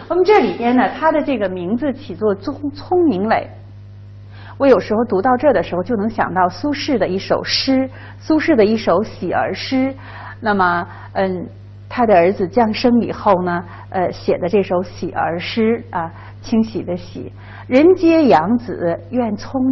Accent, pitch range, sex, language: native, 185-295 Hz, female, Chinese